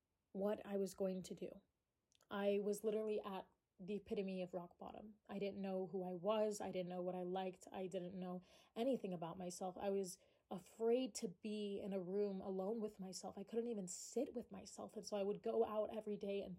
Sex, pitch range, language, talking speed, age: female, 195-225 Hz, English, 215 wpm, 30-49